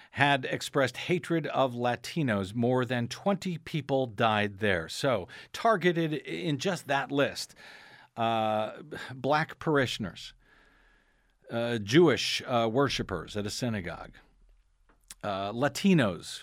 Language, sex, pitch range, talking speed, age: English, male, 110-140 Hz, 105 wpm, 50-69